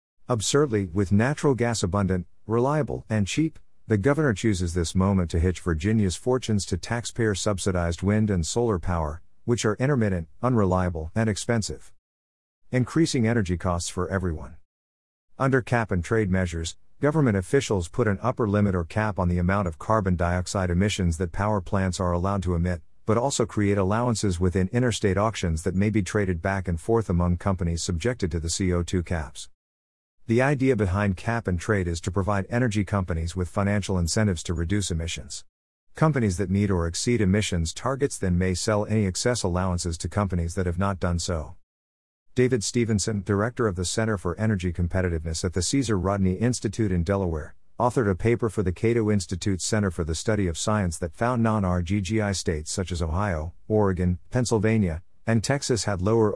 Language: English